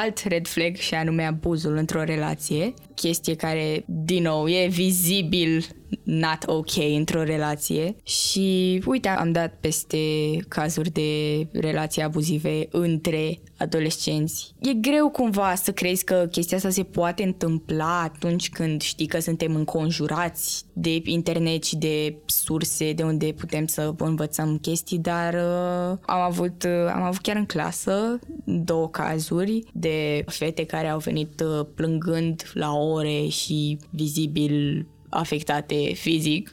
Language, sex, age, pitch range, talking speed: Romanian, female, 20-39, 155-205 Hz, 135 wpm